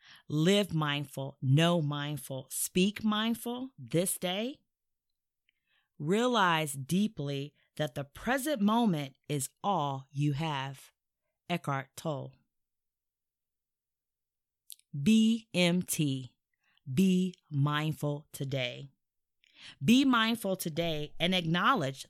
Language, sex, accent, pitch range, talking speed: English, female, American, 135-180 Hz, 80 wpm